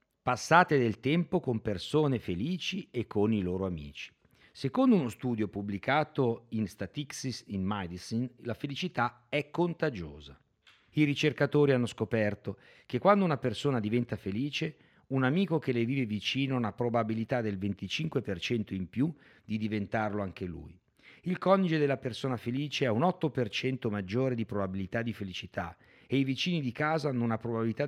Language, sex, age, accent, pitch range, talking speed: Italian, male, 50-69, native, 105-145 Hz, 155 wpm